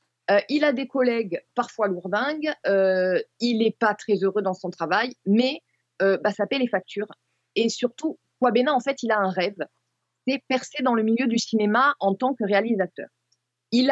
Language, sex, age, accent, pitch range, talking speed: French, female, 20-39, French, 200-255 Hz, 185 wpm